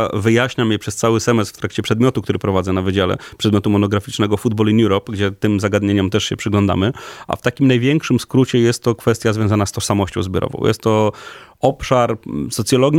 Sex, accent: male, native